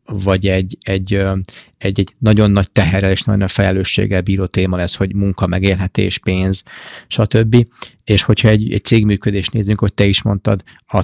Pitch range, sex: 95-110 Hz, male